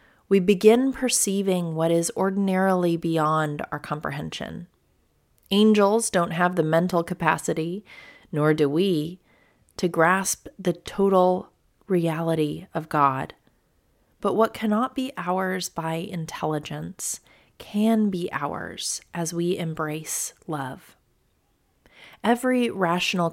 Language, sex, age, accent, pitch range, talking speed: English, female, 30-49, American, 160-195 Hz, 105 wpm